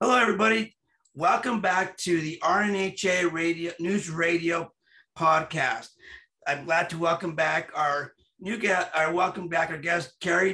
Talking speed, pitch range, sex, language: 140 wpm, 155-180 Hz, male, English